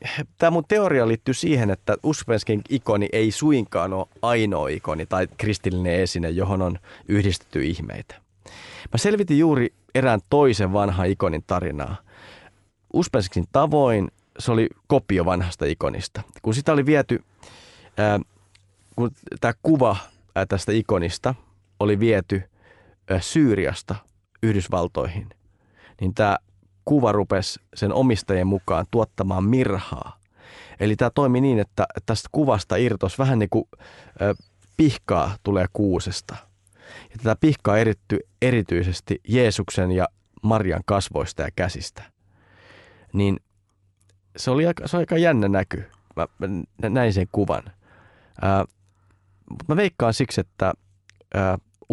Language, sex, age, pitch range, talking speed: Finnish, male, 30-49, 95-120 Hz, 120 wpm